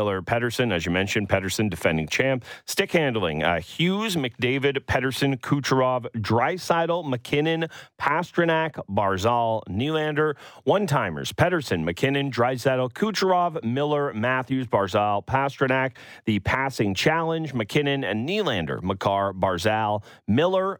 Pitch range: 95-135 Hz